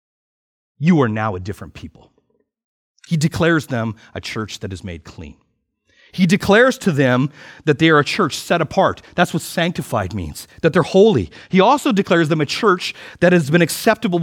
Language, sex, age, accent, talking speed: English, male, 40-59, American, 180 wpm